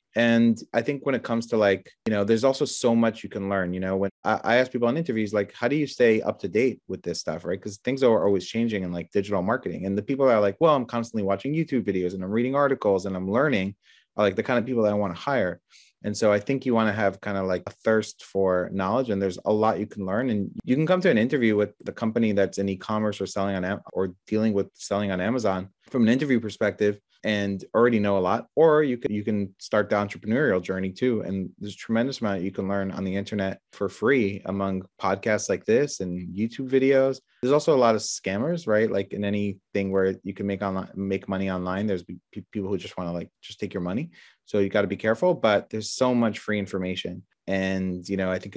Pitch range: 95-115 Hz